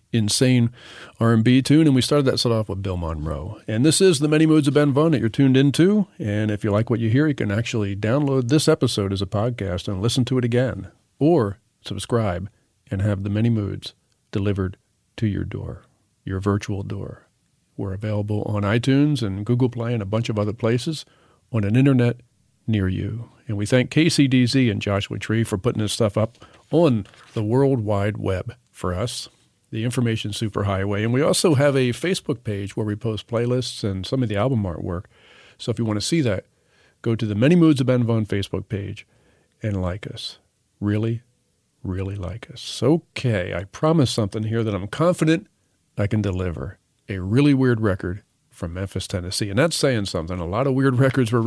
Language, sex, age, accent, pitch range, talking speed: English, male, 50-69, American, 100-130 Hz, 195 wpm